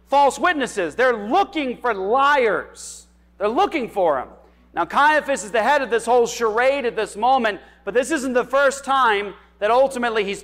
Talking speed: 180 wpm